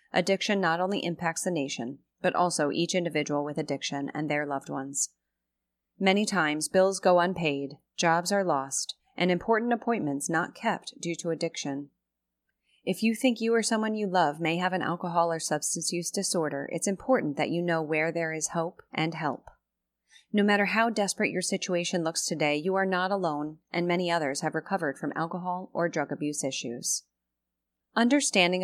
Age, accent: 30-49, American